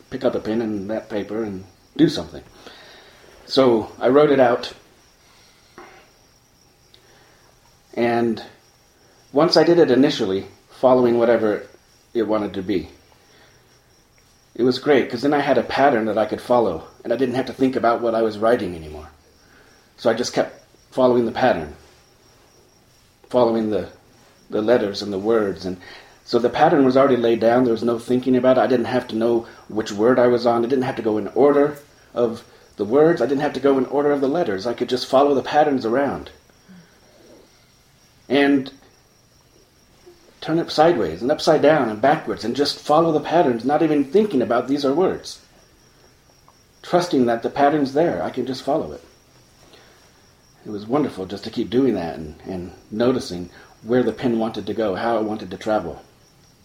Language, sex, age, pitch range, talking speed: English, male, 40-59, 110-135 Hz, 180 wpm